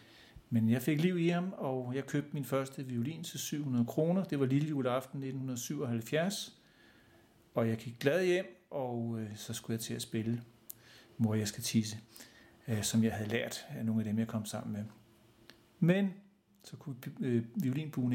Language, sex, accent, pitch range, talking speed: Danish, male, native, 110-135 Hz, 165 wpm